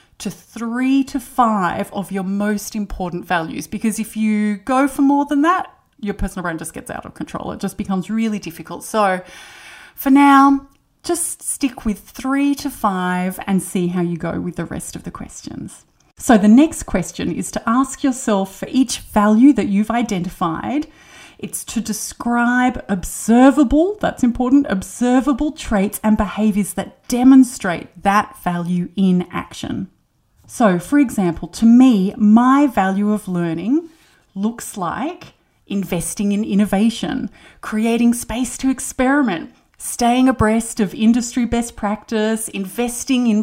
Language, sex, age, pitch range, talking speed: English, female, 30-49, 200-250 Hz, 145 wpm